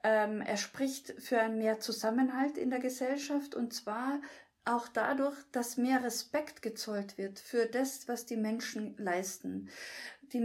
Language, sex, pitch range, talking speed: German, female, 225-260 Hz, 140 wpm